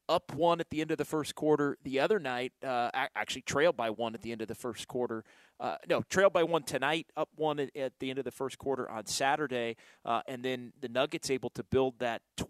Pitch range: 120-150 Hz